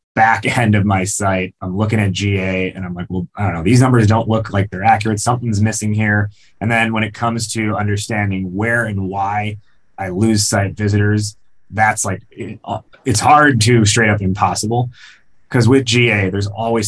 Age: 20-39